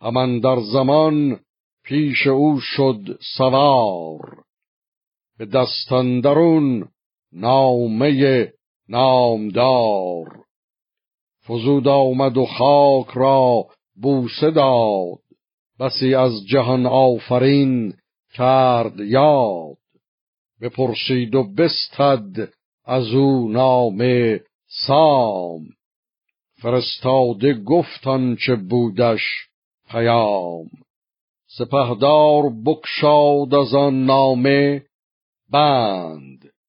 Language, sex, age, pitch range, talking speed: Persian, male, 50-69, 120-135 Hz, 65 wpm